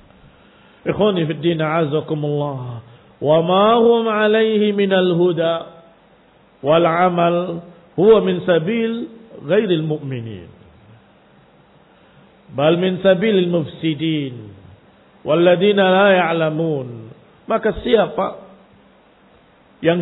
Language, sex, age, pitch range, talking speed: Indonesian, male, 50-69, 165-215 Hz, 75 wpm